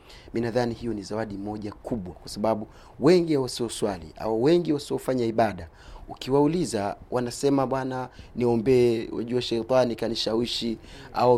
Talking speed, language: 115 wpm, Swahili